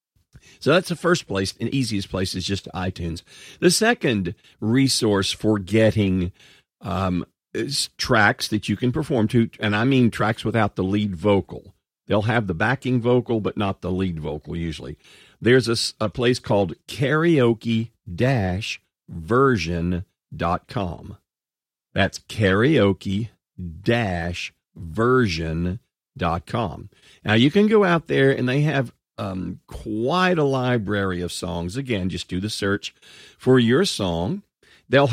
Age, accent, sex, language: 50-69, American, male, English